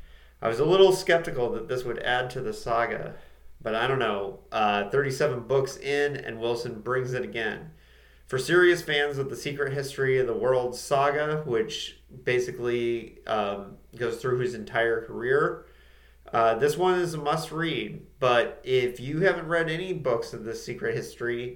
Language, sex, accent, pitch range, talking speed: English, male, American, 115-145 Hz, 170 wpm